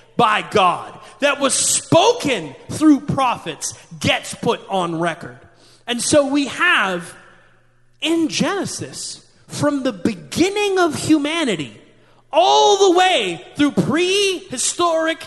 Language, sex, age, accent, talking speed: English, male, 30-49, American, 105 wpm